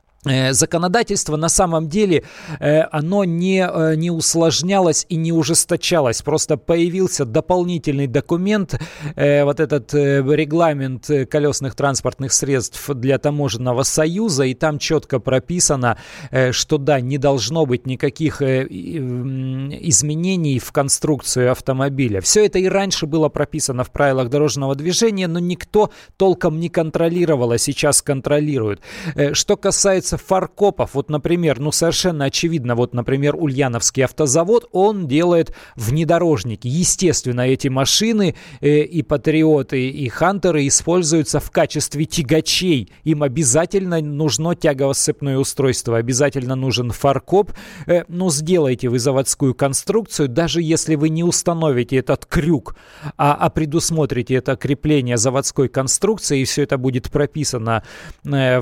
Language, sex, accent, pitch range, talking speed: Russian, male, native, 135-165 Hz, 120 wpm